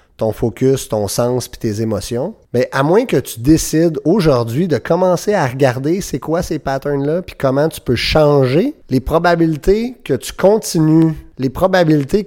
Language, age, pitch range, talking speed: French, 30-49, 120-155 Hz, 175 wpm